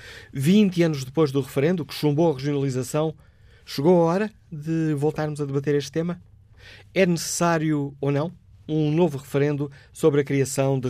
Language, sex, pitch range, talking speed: Portuguese, male, 115-150 Hz, 160 wpm